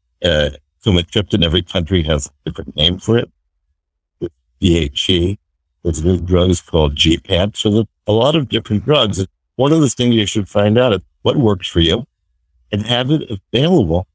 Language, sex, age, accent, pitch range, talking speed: English, male, 60-79, American, 80-110 Hz, 180 wpm